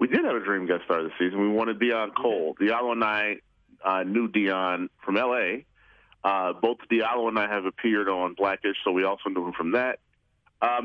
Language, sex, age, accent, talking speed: English, male, 40-59, American, 210 wpm